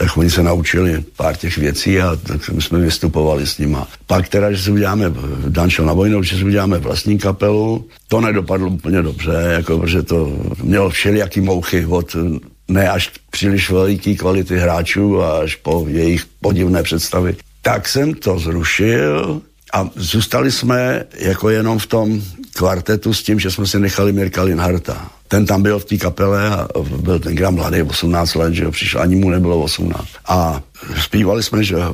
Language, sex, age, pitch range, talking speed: Slovak, male, 70-89, 85-100 Hz, 175 wpm